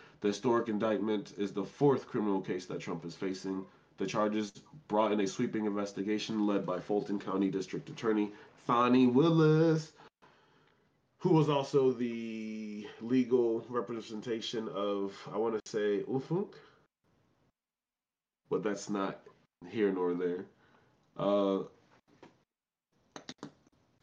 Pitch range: 100-120 Hz